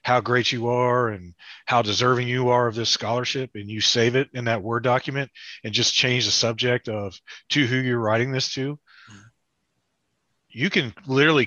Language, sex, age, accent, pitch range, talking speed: English, male, 30-49, American, 110-130 Hz, 185 wpm